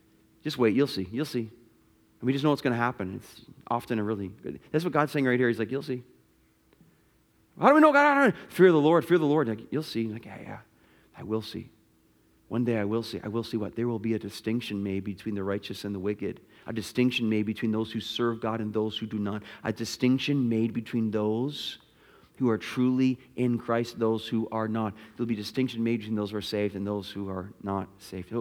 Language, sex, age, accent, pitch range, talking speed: English, male, 40-59, American, 110-145 Hz, 240 wpm